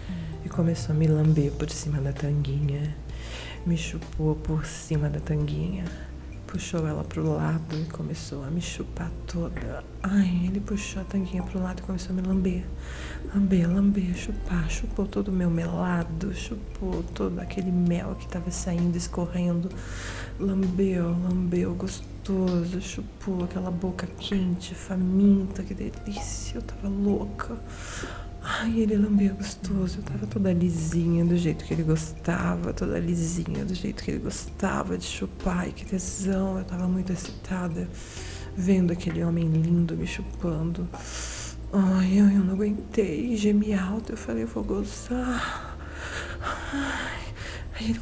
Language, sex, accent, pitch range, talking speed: Portuguese, female, Brazilian, 115-195 Hz, 140 wpm